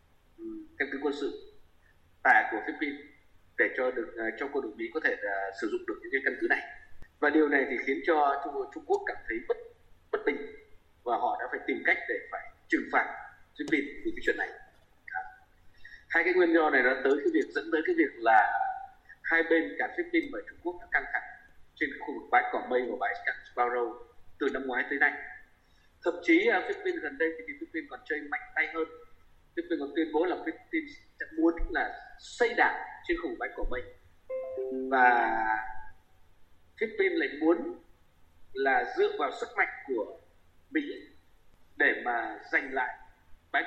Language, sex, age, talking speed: Vietnamese, male, 20-39, 190 wpm